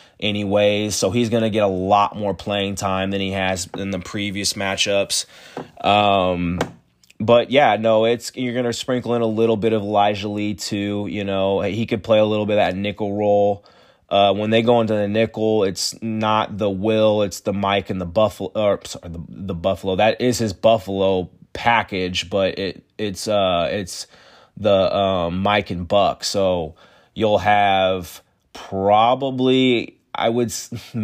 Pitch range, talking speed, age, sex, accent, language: 100-115 Hz, 175 wpm, 20-39, male, American, English